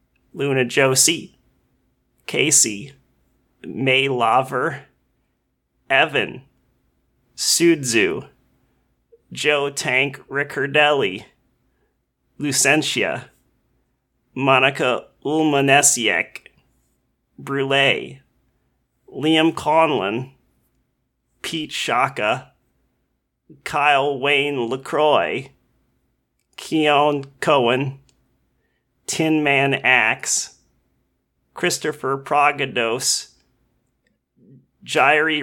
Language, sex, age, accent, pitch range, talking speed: English, male, 30-49, American, 125-145 Hz, 50 wpm